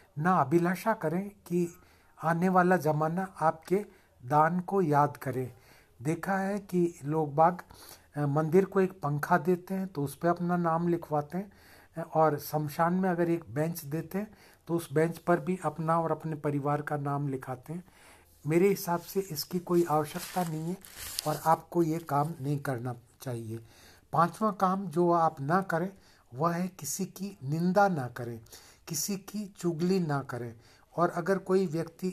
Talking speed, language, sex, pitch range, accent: 165 wpm, Hindi, male, 145-180 Hz, native